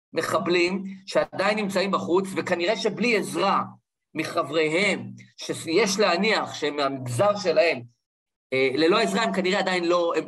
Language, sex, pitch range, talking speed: Hebrew, male, 160-255 Hz, 115 wpm